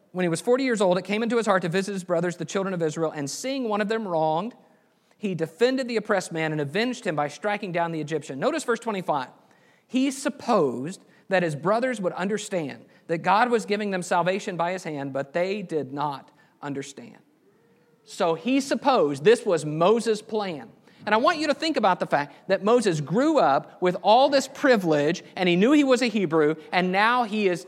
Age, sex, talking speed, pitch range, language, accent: 50-69, male, 210 wpm, 175-240 Hz, English, American